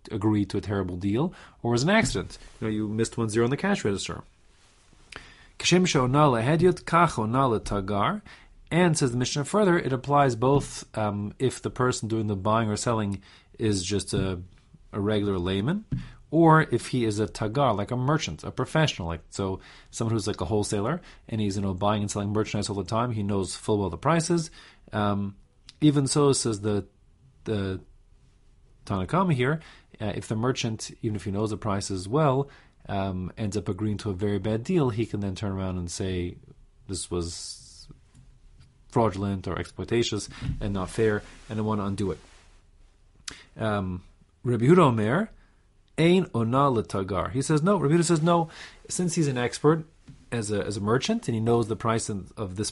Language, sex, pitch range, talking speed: English, male, 100-130 Hz, 180 wpm